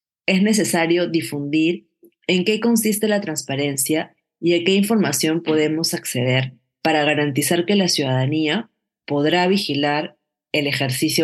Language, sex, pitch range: Spanish, female, 145-180 Hz